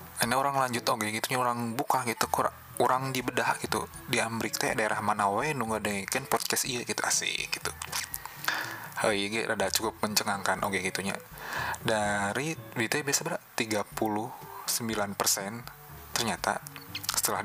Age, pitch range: 20-39, 105-120 Hz